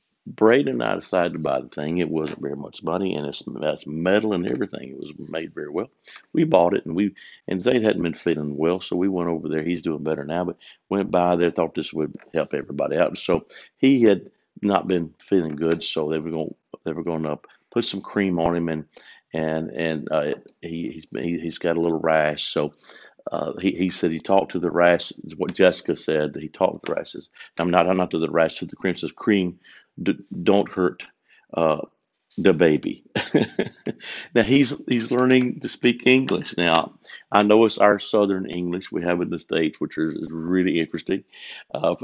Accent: American